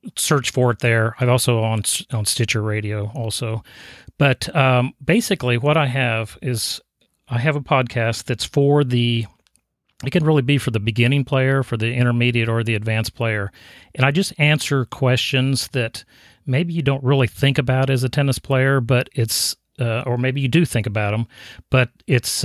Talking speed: 185 wpm